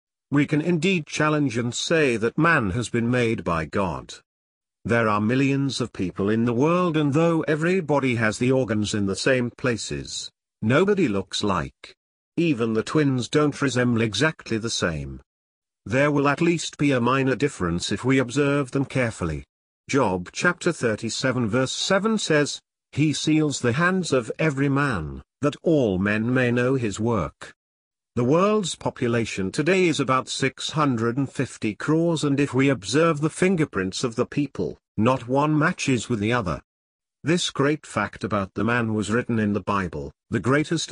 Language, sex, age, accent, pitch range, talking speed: English, male, 50-69, British, 110-150 Hz, 165 wpm